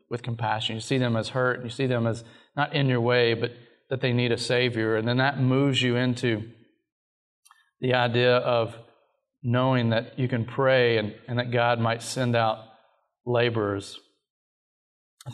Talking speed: 175 wpm